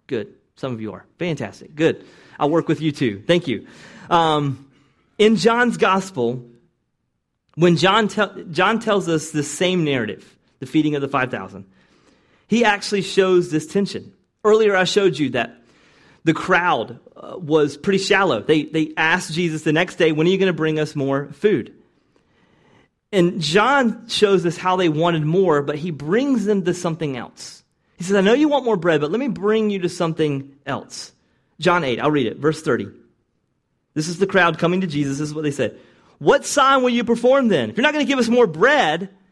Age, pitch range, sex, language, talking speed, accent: 30-49, 155-240 Hz, male, English, 195 wpm, American